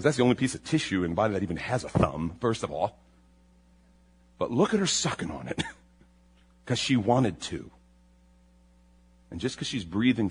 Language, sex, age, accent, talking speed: English, male, 40-59, American, 185 wpm